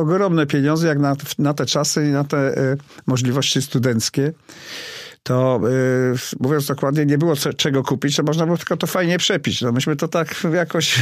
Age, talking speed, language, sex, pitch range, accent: 50-69, 185 wpm, Polish, male, 125-150 Hz, native